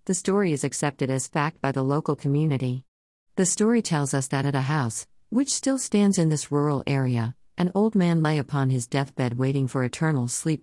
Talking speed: 205 wpm